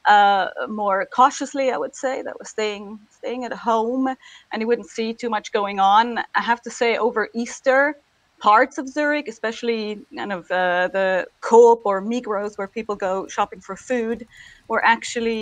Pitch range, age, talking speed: 200-240 Hz, 30-49, 175 wpm